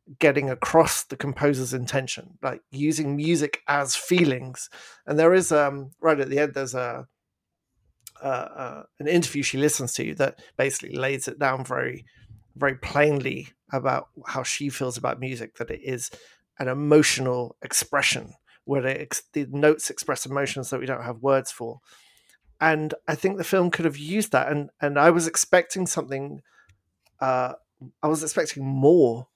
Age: 40-59